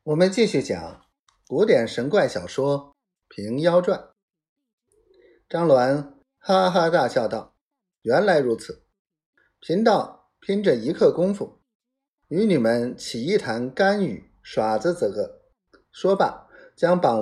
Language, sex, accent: Chinese, male, native